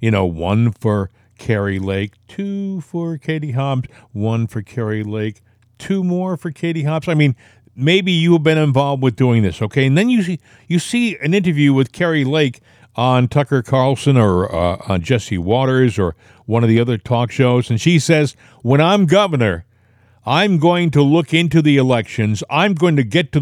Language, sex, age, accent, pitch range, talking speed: English, male, 50-69, American, 115-160 Hz, 185 wpm